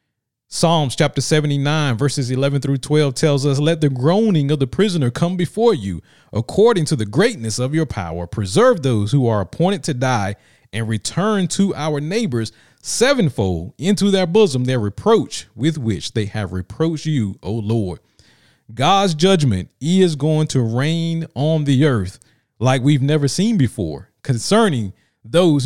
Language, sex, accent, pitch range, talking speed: English, male, American, 120-165 Hz, 155 wpm